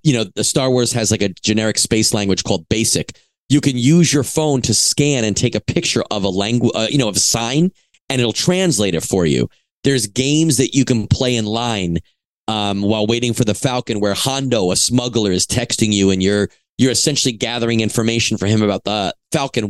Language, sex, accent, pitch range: English, male, American, 105-130 Hz